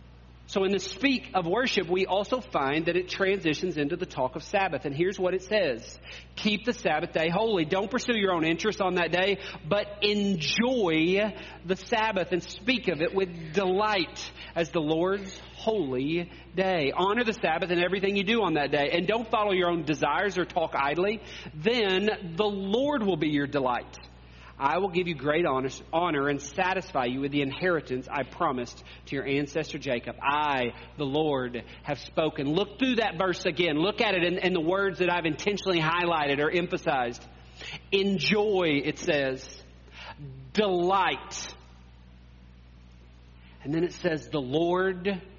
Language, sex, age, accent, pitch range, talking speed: English, male, 40-59, American, 140-195 Hz, 170 wpm